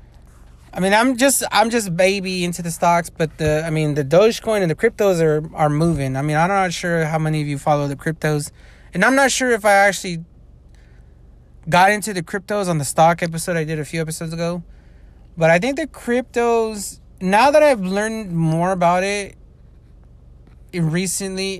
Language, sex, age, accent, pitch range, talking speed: English, male, 30-49, American, 130-195 Hz, 190 wpm